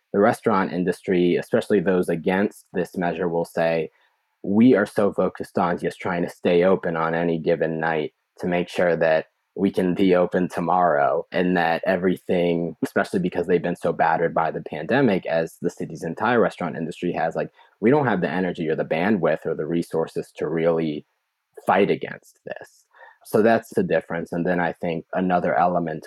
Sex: male